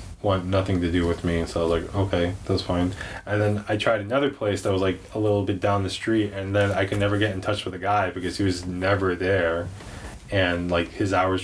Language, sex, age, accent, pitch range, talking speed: English, male, 20-39, American, 90-105 Hz, 250 wpm